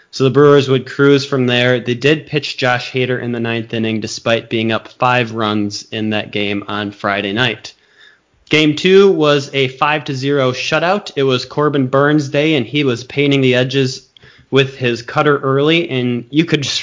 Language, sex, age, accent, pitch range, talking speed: English, male, 20-39, American, 115-145 Hz, 195 wpm